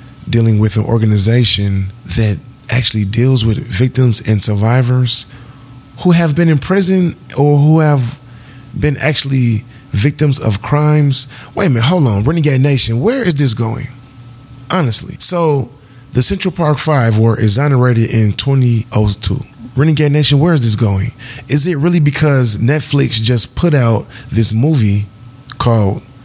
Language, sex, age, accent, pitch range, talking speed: English, male, 20-39, American, 110-135 Hz, 140 wpm